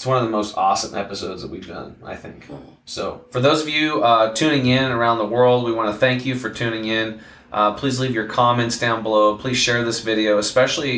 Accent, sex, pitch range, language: American, male, 105-125 Hz, English